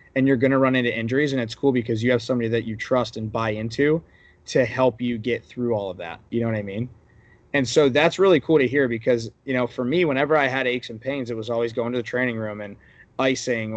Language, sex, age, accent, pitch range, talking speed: English, male, 20-39, American, 115-135 Hz, 265 wpm